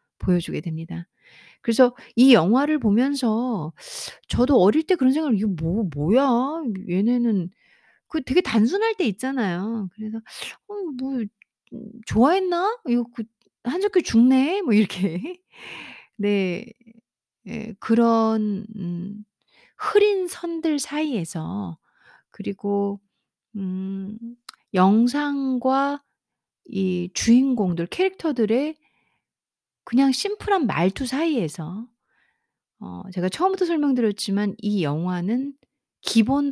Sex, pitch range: female, 195-270 Hz